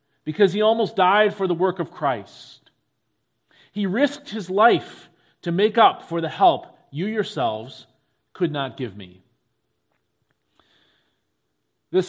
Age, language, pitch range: 40-59, English, 145-185 Hz